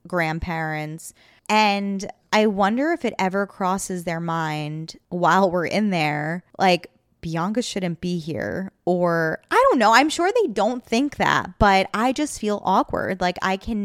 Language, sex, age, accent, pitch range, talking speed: English, female, 20-39, American, 175-225 Hz, 160 wpm